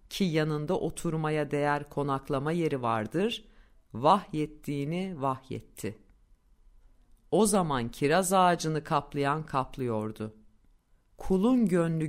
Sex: female